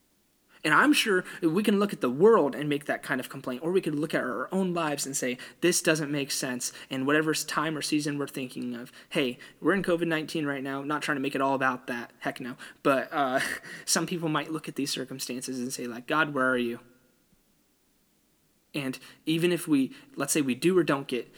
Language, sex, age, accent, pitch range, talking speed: English, male, 20-39, American, 130-175 Hz, 225 wpm